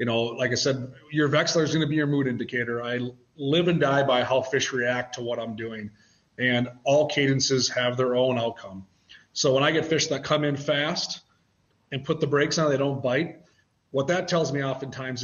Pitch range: 125-155 Hz